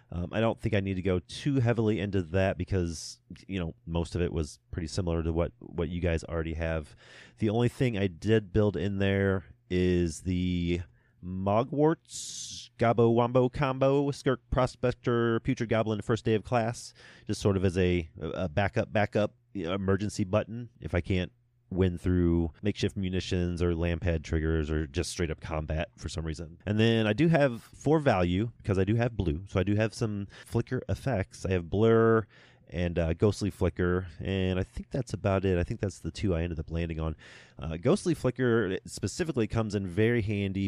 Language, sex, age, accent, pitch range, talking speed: English, male, 30-49, American, 90-120 Hz, 190 wpm